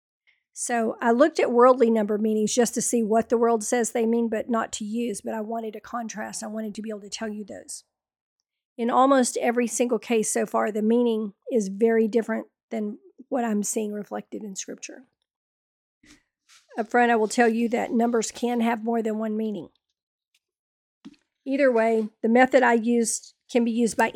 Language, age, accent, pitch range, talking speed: English, 50-69, American, 220-245 Hz, 190 wpm